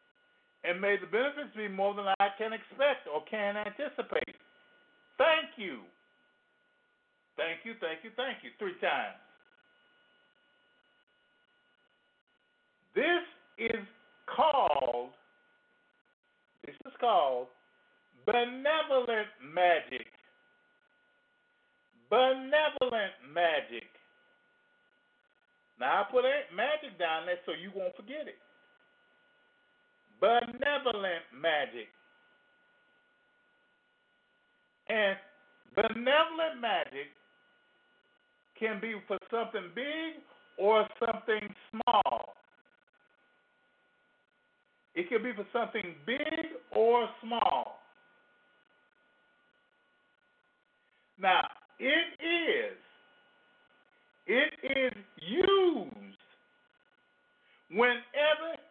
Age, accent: 50-69, American